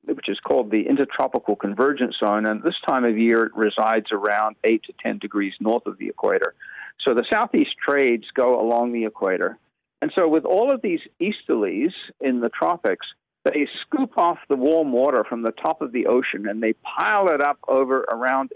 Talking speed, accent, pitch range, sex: 195 wpm, American, 115-170 Hz, male